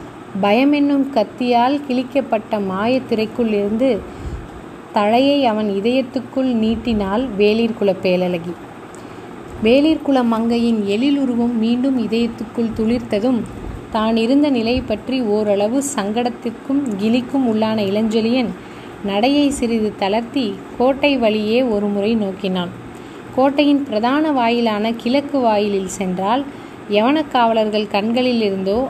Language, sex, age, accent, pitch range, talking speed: Tamil, female, 20-39, native, 215-260 Hz, 90 wpm